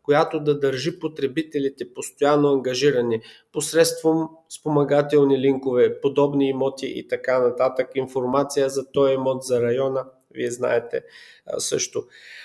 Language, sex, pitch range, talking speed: Bulgarian, male, 125-155 Hz, 110 wpm